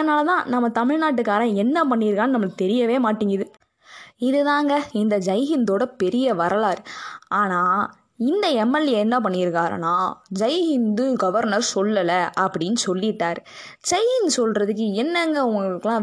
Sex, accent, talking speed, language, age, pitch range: female, native, 105 wpm, Tamil, 20-39, 195-260 Hz